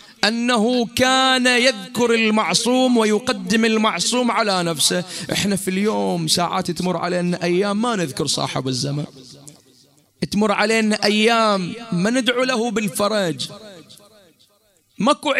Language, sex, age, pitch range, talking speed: Arabic, male, 30-49, 165-230 Hz, 105 wpm